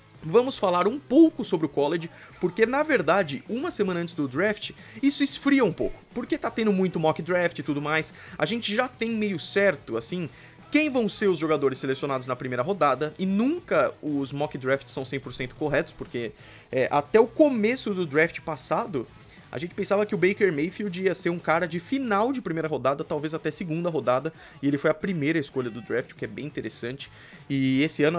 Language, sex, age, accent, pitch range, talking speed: Portuguese, male, 20-39, Brazilian, 140-195 Hz, 200 wpm